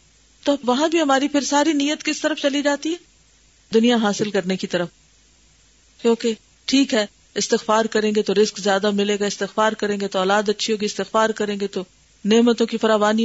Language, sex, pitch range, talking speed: Urdu, female, 200-270 Hz, 195 wpm